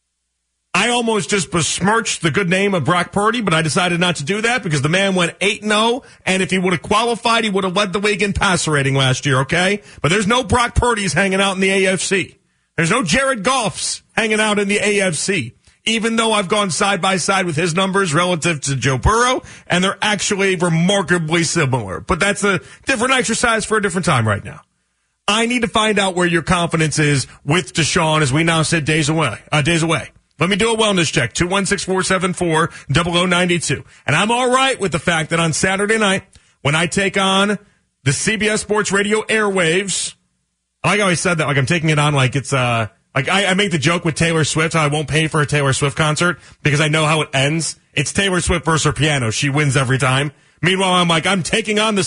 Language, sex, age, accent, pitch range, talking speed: English, male, 40-59, American, 150-205 Hz, 215 wpm